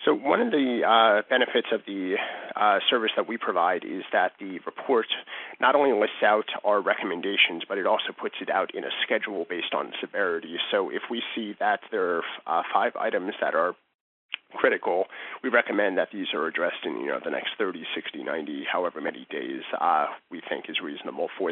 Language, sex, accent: English, male, American